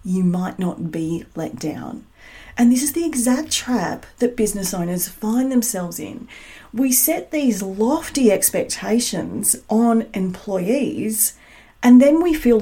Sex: female